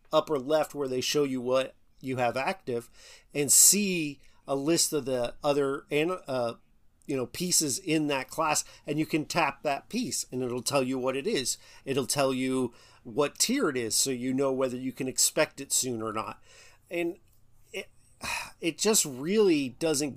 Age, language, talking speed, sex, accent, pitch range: 40-59, English, 185 wpm, male, American, 130-170 Hz